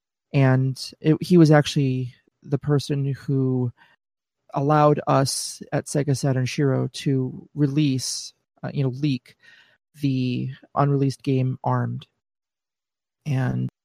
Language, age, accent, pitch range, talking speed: English, 30-49, American, 130-145 Hz, 105 wpm